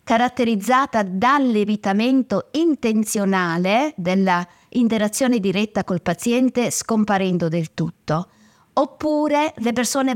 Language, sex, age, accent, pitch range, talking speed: Italian, female, 50-69, native, 180-245 Hz, 75 wpm